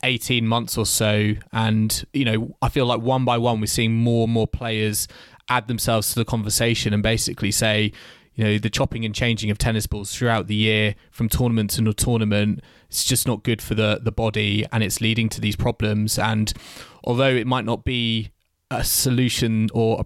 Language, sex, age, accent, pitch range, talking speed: English, male, 20-39, British, 110-120 Hz, 200 wpm